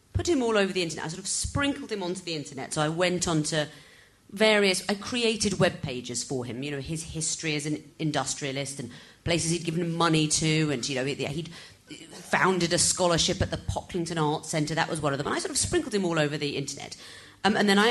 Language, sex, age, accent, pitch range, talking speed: English, female, 40-59, British, 140-205 Hz, 230 wpm